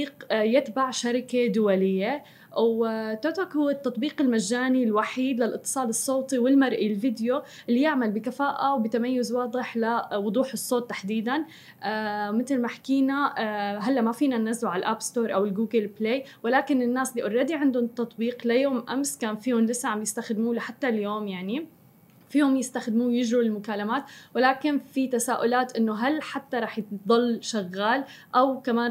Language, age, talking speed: Arabic, 20-39, 135 wpm